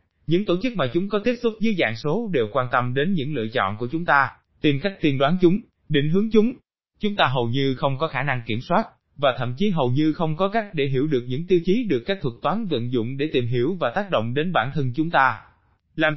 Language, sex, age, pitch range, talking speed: Vietnamese, male, 20-39, 125-185 Hz, 265 wpm